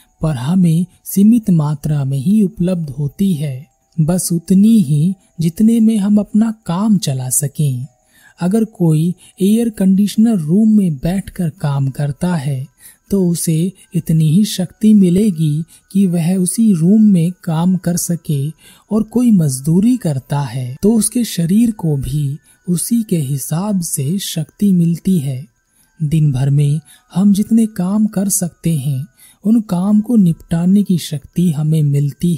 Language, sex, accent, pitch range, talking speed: Hindi, male, native, 145-195 Hz, 145 wpm